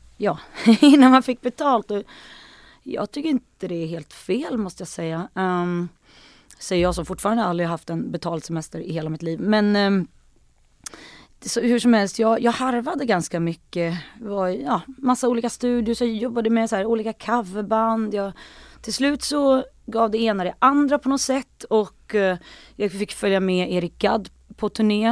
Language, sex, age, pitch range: English, female, 30-49, 175-230 Hz